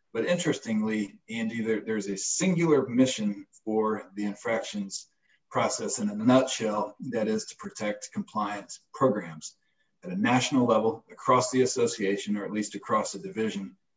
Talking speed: 140 wpm